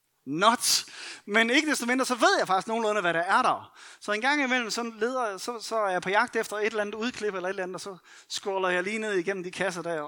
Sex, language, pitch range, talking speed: male, Danish, 185-255 Hz, 275 wpm